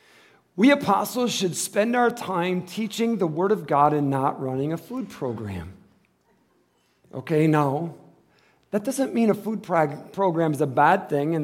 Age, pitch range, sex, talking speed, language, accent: 50-69, 160-230 Hz, male, 155 wpm, English, American